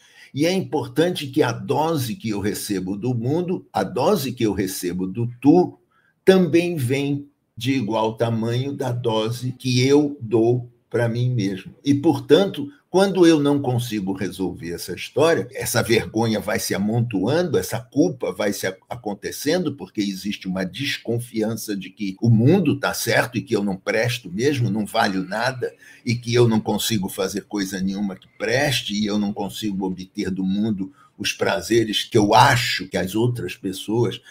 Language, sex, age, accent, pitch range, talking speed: Portuguese, male, 60-79, Brazilian, 105-140 Hz, 165 wpm